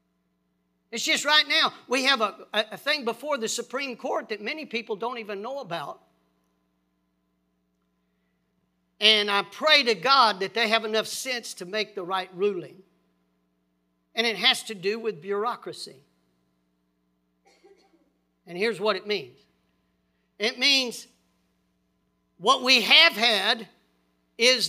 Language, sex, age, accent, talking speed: English, male, 50-69, American, 130 wpm